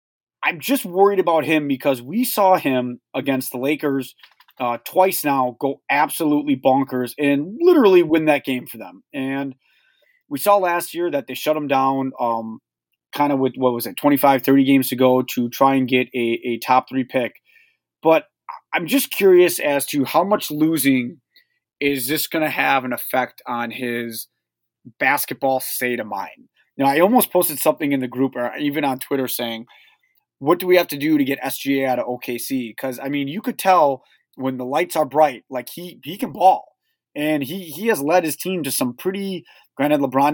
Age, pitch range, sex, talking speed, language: 30-49, 130-175 Hz, male, 195 wpm, English